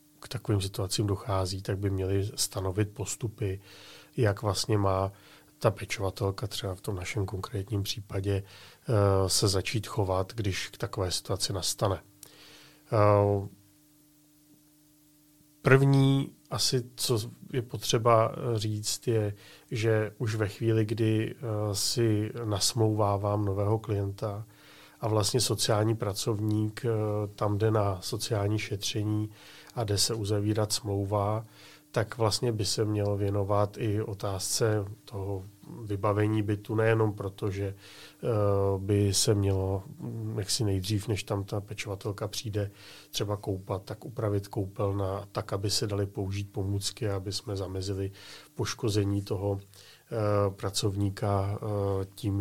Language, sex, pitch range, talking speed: Czech, male, 100-115 Hz, 115 wpm